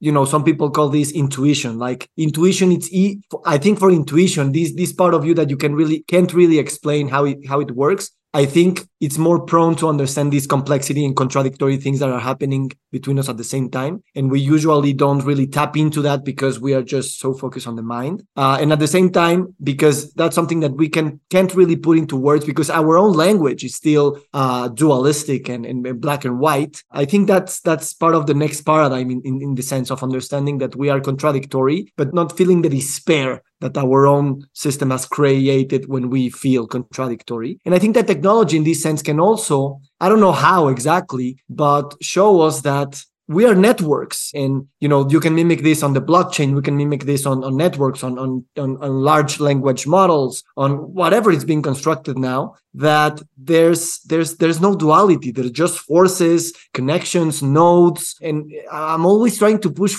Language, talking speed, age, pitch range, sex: Spanish, 205 wpm, 20-39, 135-165 Hz, male